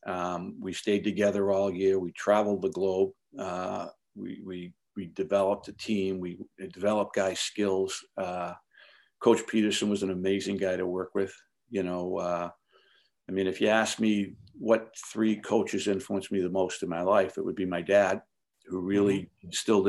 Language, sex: English, male